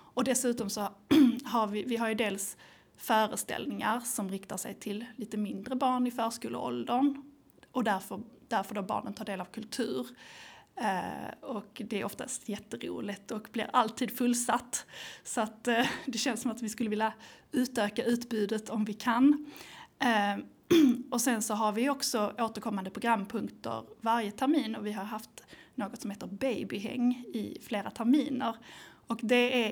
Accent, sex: native, female